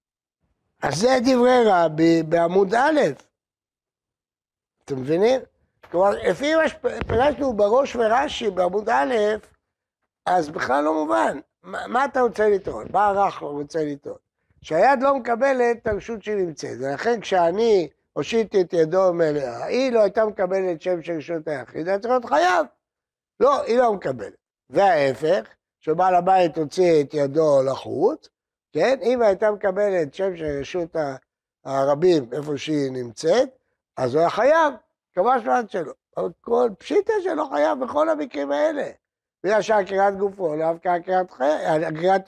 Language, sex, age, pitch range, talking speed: Hebrew, male, 60-79, 160-250 Hz, 130 wpm